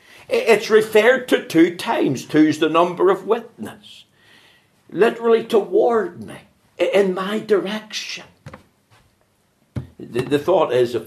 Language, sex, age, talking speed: English, male, 60-79, 115 wpm